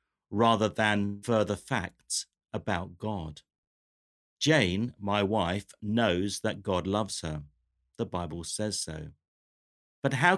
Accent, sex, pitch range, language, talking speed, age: British, male, 95-120 Hz, English, 115 wpm, 50-69